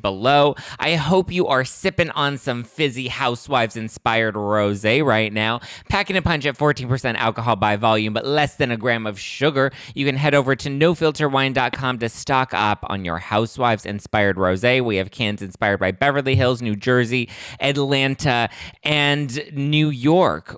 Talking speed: 165 wpm